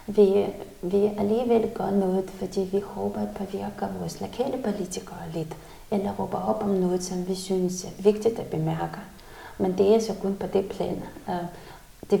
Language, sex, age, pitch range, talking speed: Danish, female, 20-39, 185-210 Hz, 175 wpm